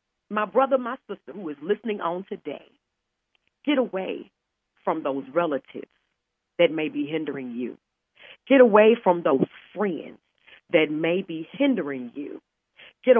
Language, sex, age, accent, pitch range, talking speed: English, female, 40-59, American, 160-255 Hz, 135 wpm